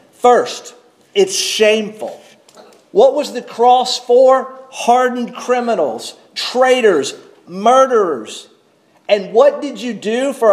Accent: American